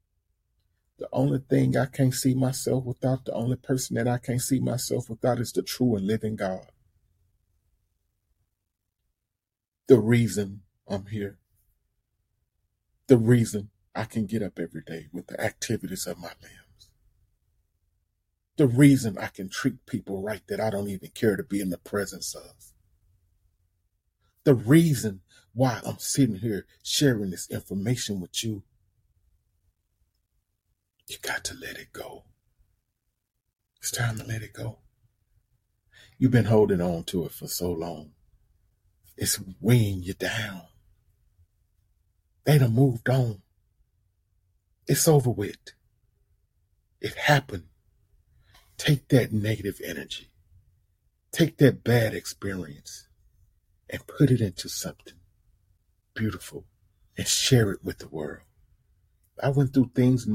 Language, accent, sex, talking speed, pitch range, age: English, American, male, 130 wpm, 90-120 Hz, 40-59